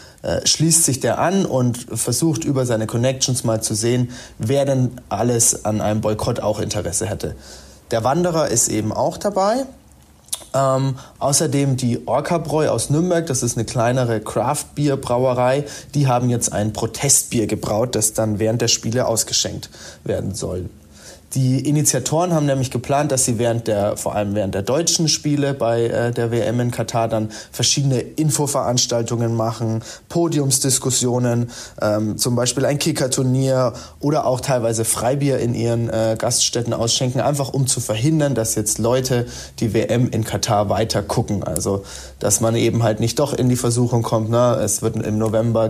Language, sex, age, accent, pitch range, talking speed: German, male, 30-49, German, 110-135 Hz, 160 wpm